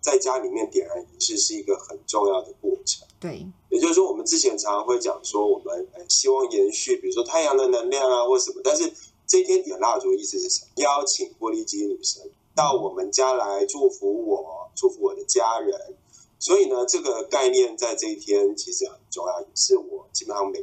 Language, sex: Chinese, male